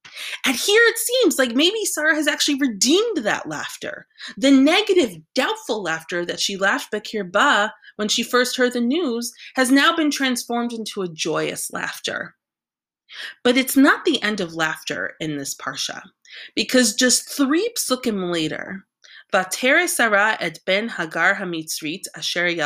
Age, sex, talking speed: 20-39, female, 150 wpm